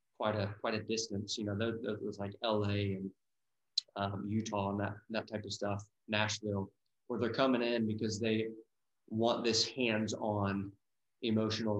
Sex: male